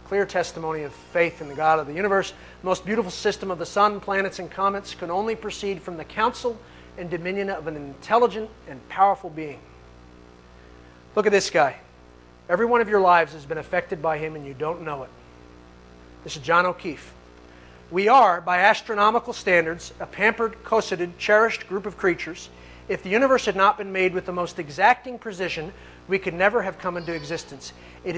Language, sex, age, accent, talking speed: English, male, 40-59, American, 190 wpm